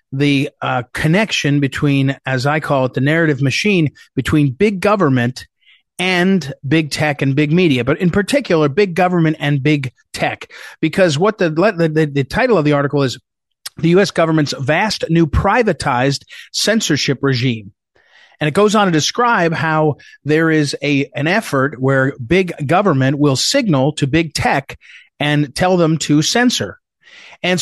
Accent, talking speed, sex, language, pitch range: American, 160 wpm, male, English, 140-180 Hz